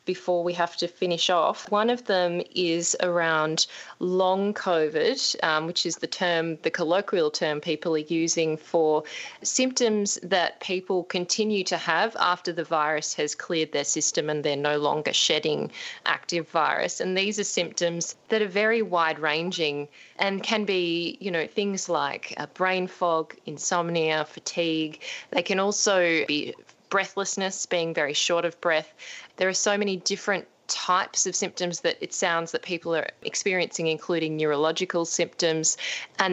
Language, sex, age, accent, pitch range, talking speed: English, female, 20-39, Australian, 160-195 Hz, 155 wpm